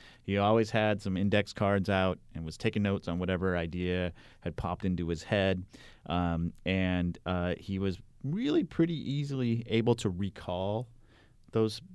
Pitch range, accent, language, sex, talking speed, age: 95-115 Hz, American, English, male, 155 wpm, 30-49